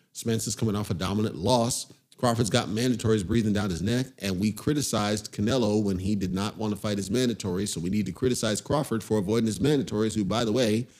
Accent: American